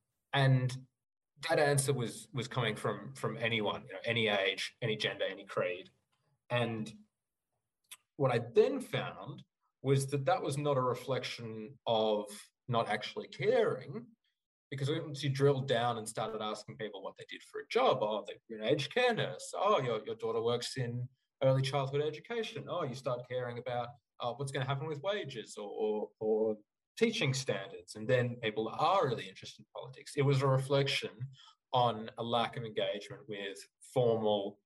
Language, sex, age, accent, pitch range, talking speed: English, male, 20-39, Australian, 115-145 Hz, 170 wpm